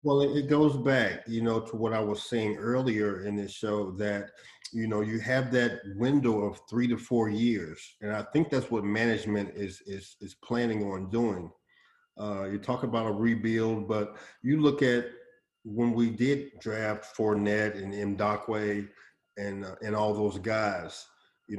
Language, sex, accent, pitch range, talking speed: English, male, American, 105-120 Hz, 180 wpm